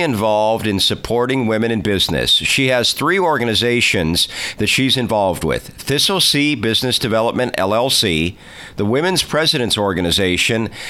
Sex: male